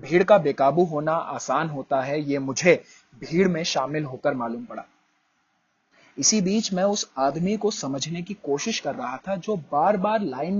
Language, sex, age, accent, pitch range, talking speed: Hindi, male, 30-49, native, 135-190 Hz, 175 wpm